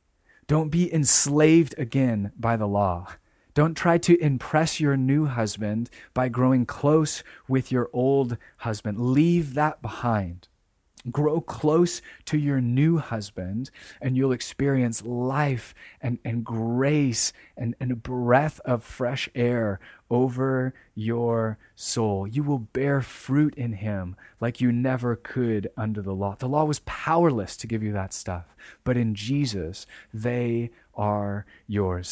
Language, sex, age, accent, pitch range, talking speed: English, male, 30-49, American, 105-135 Hz, 140 wpm